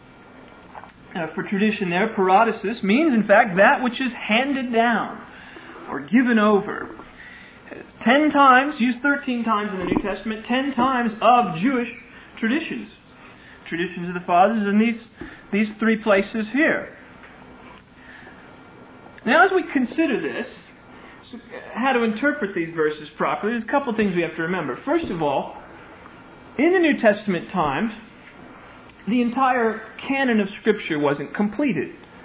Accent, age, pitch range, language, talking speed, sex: American, 40-59, 190-255 Hz, English, 145 wpm, male